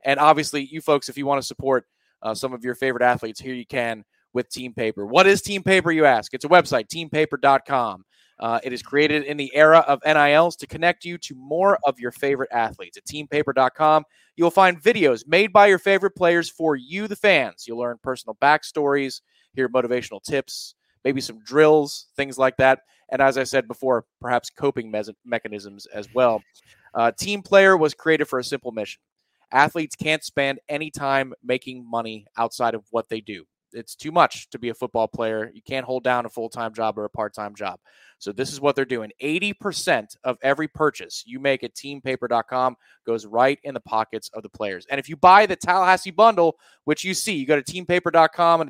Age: 20-39